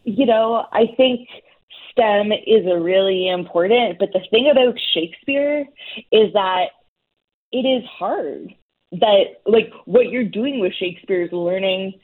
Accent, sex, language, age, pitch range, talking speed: American, female, English, 20-39, 175-225 Hz, 140 wpm